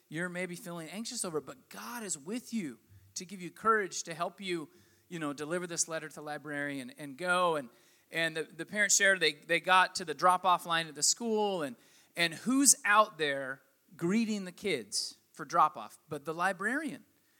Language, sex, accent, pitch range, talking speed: English, male, American, 155-205 Hz, 200 wpm